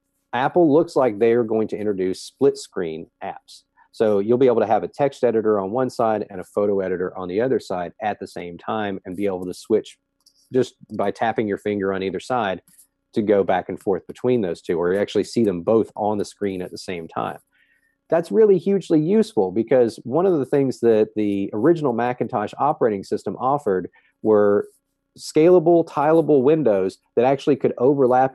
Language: English